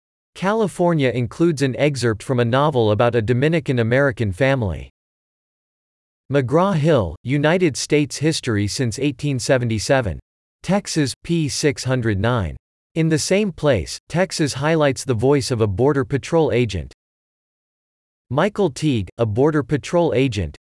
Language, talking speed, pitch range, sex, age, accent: English, 110 wpm, 115-150 Hz, male, 40-59, American